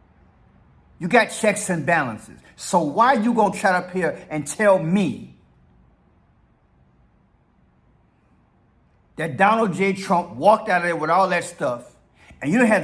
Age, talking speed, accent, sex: 50-69, 150 wpm, American, male